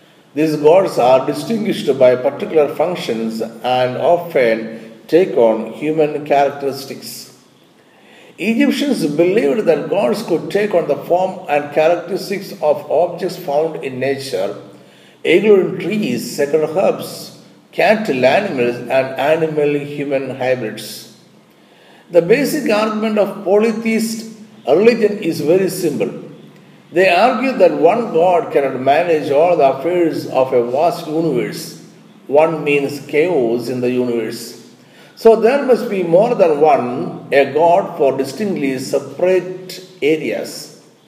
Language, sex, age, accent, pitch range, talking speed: Malayalam, male, 50-69, native, 130-195 Hz, 120 wpm